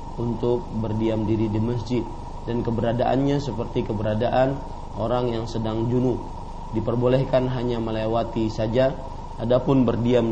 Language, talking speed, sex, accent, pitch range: Indonesian, 110 wpm, male, native, 115-130 Hz